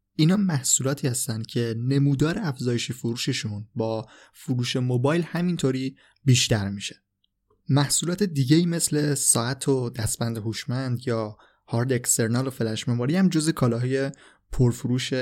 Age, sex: 20-39, male